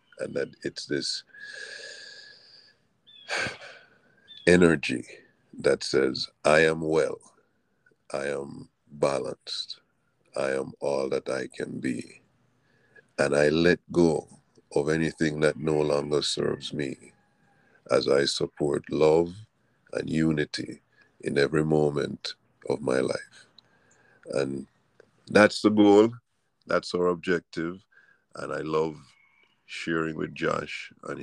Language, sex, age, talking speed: English, male, 50-69, 110 wpm